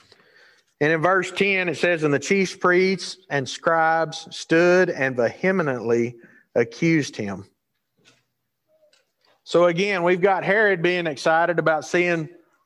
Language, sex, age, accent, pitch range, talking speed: English, male, 50-69, American, 135-190 Hz, 125 wpm